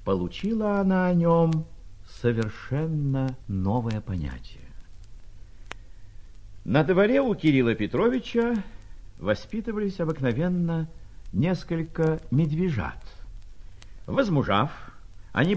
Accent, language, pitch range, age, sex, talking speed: native, Russian, 100-170 Hz, 50-69, male, 70 wpm